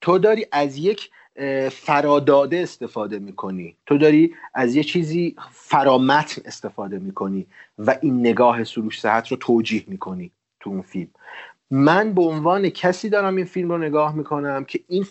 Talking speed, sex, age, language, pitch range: 150 wpm, male, 30-49, Persian, 125-170 Hz